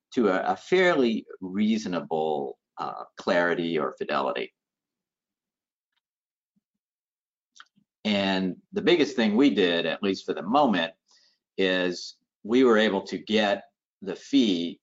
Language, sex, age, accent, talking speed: English, male, 50-69, American, 110 wpm